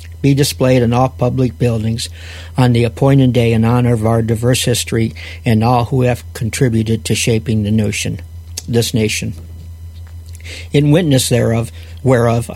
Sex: male